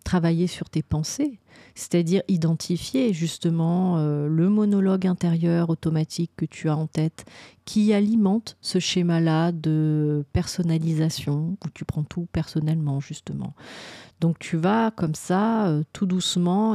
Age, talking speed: 40-59, 135 wpm